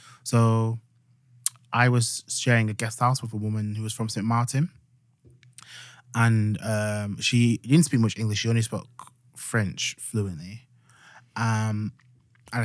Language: English